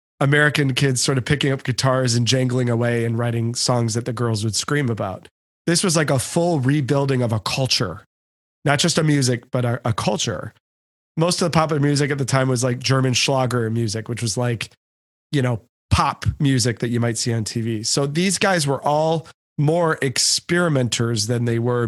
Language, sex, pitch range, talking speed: English, male, 120-155 Hz, 195 wpm